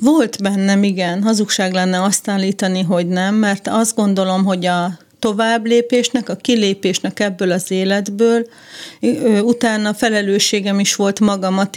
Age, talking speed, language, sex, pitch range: 40-59, 125 wpm, Hungarian, female, 190-220 Hz